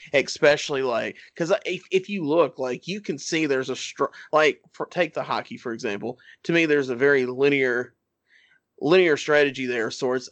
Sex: male